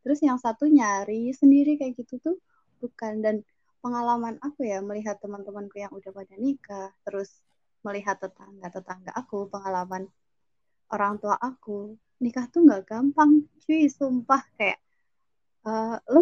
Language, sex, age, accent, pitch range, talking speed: Indonesian, female, 20-39, native, 205-255 Hz, 135 wpm